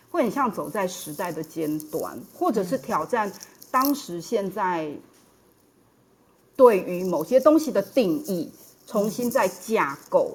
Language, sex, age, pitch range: Chinese, female, 30-49, 175-265 Hz